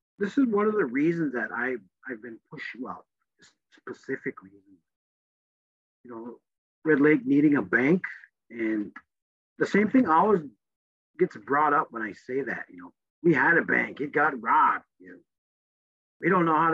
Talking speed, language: 170 wpm, English